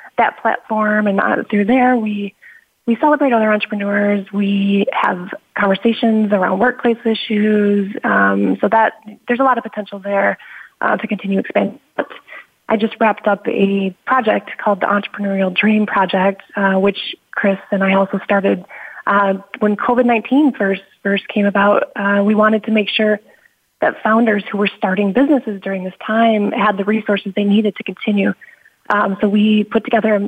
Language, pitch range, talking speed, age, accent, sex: English, 195-220 Hz, 165 wpm, 20-39, American, female